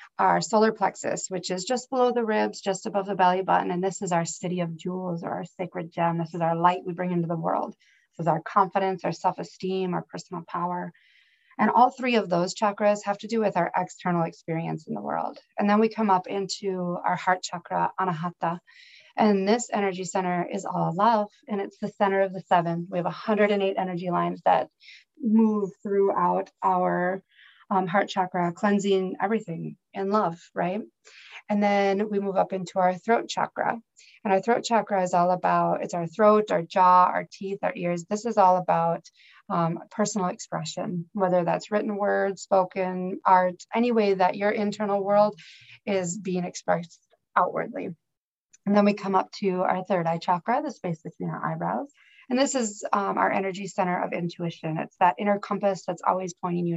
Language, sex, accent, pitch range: English, female, American, 180-210 Hz